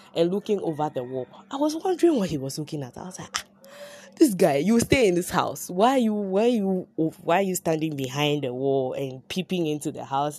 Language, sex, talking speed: English, female, 235 wpm